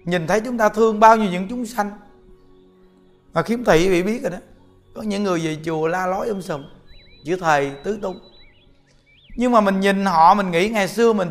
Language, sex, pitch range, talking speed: Vietnamese, male, 155-205 Hz, 210 wpm